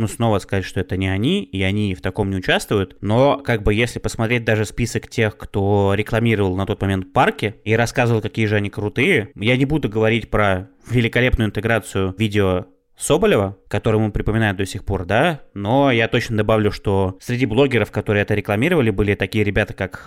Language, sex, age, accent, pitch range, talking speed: Russian, male, 20-39, native, 100-120 Hz, 190 wpm